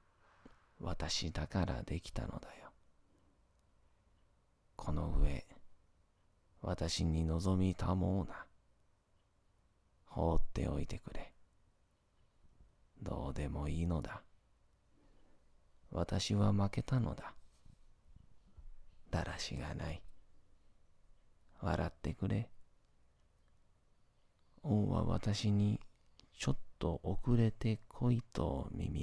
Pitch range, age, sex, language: 85-100 Hz, 40-59, male, Japanese